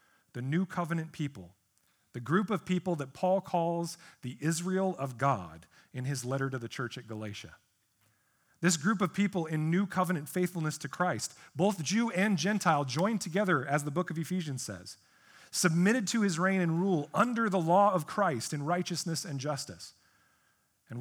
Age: 40-59